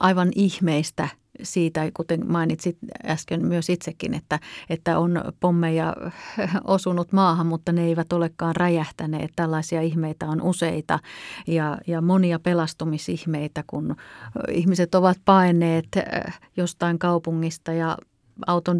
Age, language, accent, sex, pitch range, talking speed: 30-49, Finnish, native, female, 155-180 Hz, 110 wpm